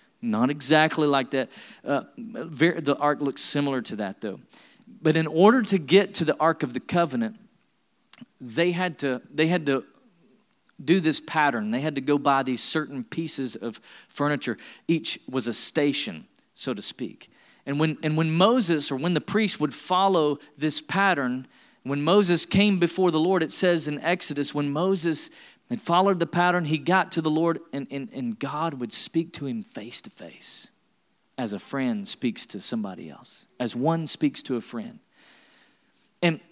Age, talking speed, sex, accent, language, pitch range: 40-59, 180 wpm, male, American, English, 145-195 Hz